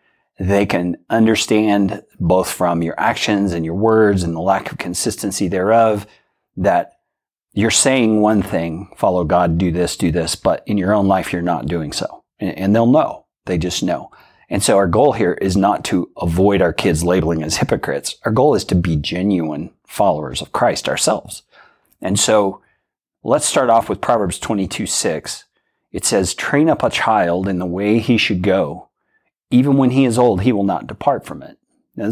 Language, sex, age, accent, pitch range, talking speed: English, male, 40-59, American, 90-110 Hz, 185 wpm